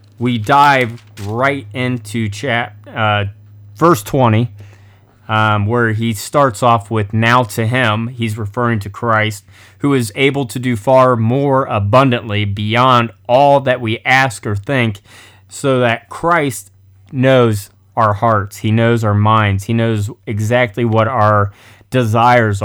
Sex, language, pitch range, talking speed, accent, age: male, English, 100-125 Hz, 140 wpm, American, 30-49